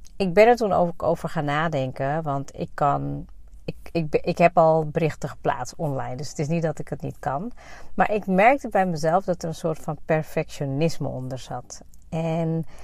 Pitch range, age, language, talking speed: 145-175 Hz, 40-59, Dutch, 195 wpm